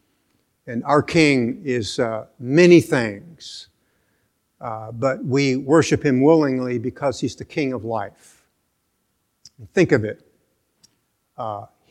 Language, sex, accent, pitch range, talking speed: English, male, American, 125-155 Hz, 115 wpm